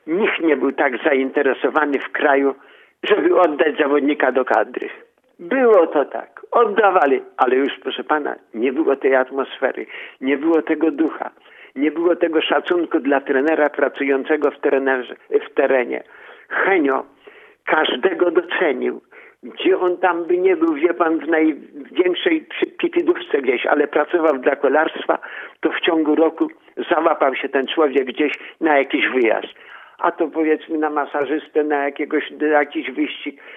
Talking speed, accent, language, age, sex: 140 wpm, native, Polish, 50-69, male